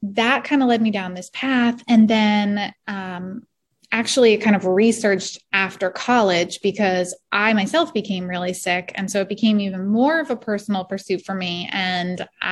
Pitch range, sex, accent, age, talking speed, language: 190-235 Hz, female, American, 20-39, 175 wpm, English